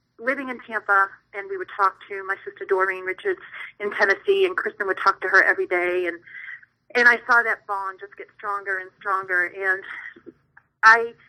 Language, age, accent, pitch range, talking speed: English, 40-59, American, 185-255 Hz, 185 wpm